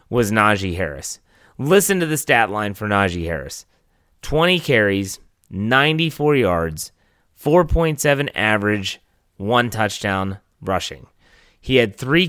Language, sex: English, male